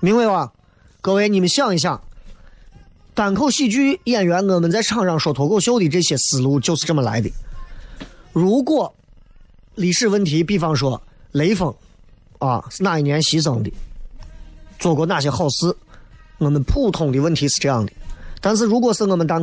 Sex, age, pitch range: male, 20-39, 130-195 Hz